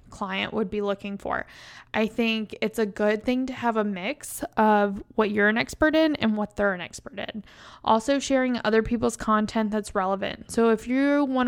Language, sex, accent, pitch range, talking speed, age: English, female, American, 205-230 Hz, 200 wpm, 20-39